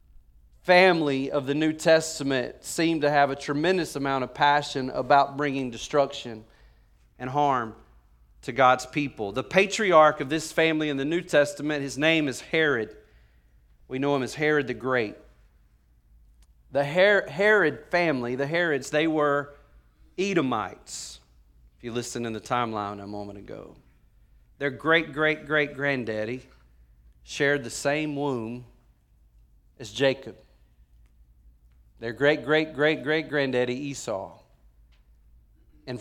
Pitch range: 100-145 Hz